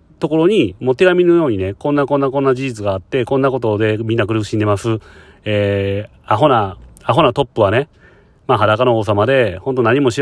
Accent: native